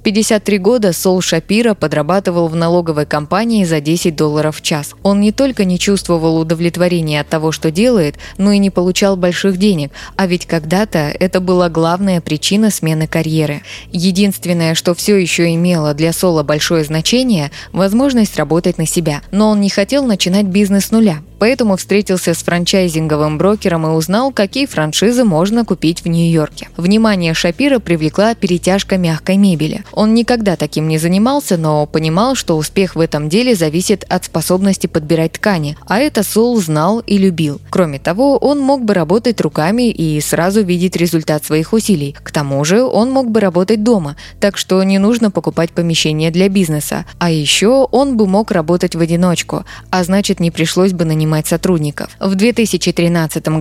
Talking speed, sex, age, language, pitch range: 165 wpm, female, 20-39, Russian, 165-210 Hz